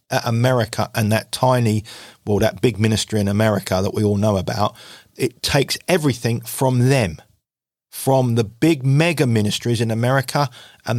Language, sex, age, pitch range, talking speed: English, male, 40-59, 110-140 Hz, 160 wpm